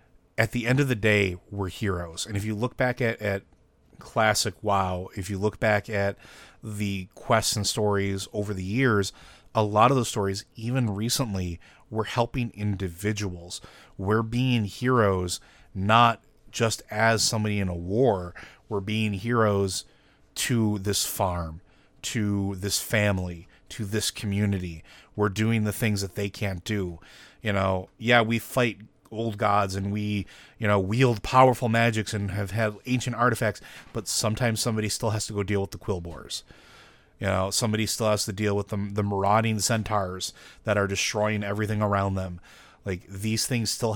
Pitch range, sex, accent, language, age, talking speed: 95-110 Hz, male, American, English, 30-49, 165 wpm